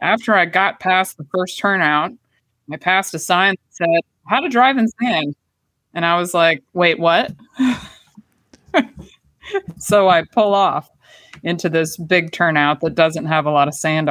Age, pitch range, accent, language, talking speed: 20-39, 155-195 Hz, American, English, 165 wpm